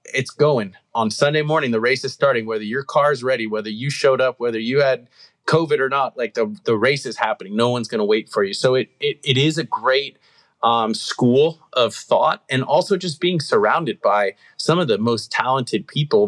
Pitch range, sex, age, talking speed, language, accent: 115-150 Hz, male, 30-49, 220 wpm, English, American